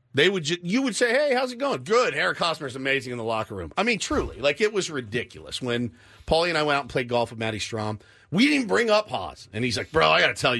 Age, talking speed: 40-59, 290 wpm